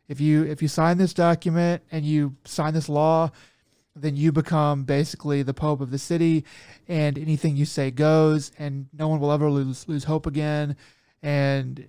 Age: 30-49